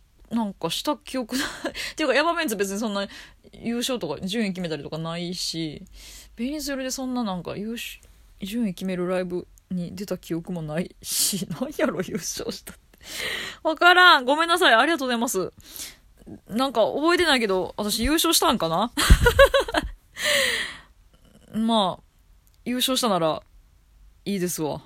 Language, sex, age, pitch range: Japanese, female, 20-39, 180-275 Hz